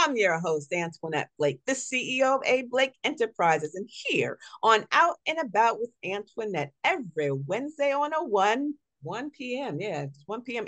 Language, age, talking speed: English, 40-59, 170 wpm